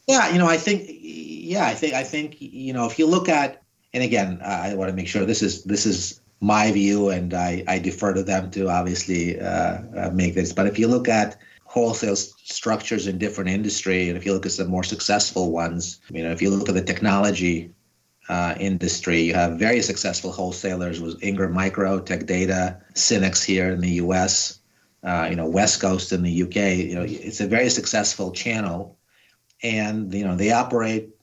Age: 30-49